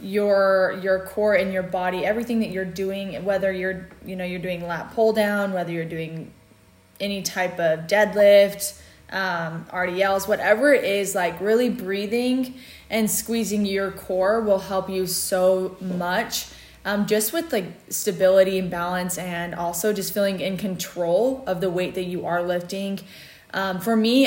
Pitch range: 180-210 Hz